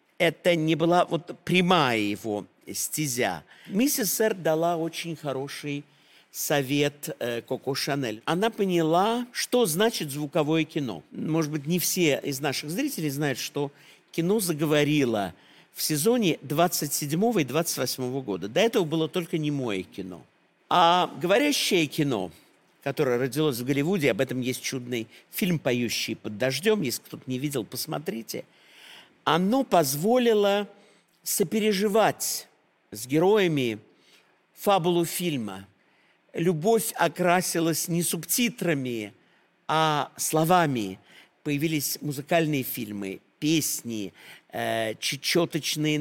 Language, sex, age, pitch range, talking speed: Russian, male, 50-69, 135-175 Hz, 105 wpm